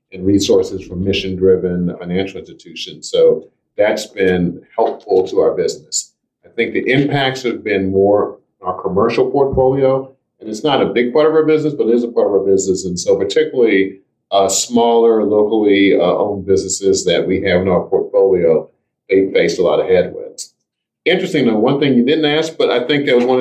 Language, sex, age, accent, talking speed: English, male, 50-69, American, 190 wpm